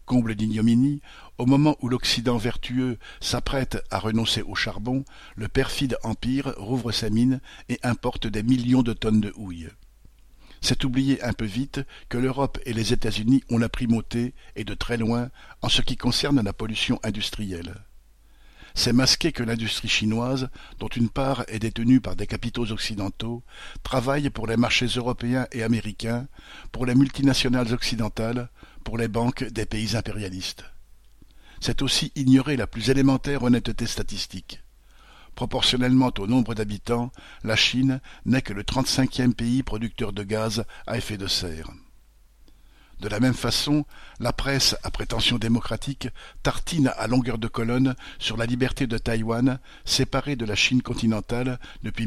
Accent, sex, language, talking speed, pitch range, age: French, male, French, 155 wpm, 110-130 Hz, 60-79